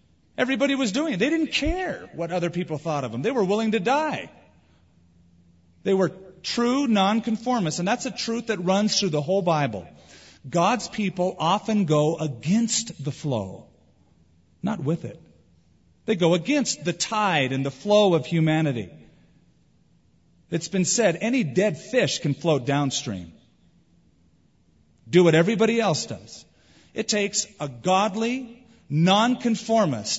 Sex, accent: male, American